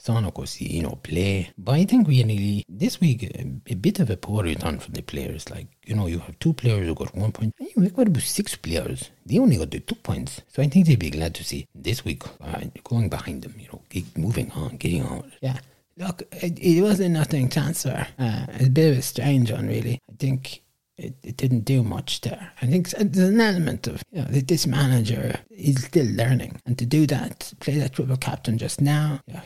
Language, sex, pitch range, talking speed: English, male, 115-155 Hz, 235 wpm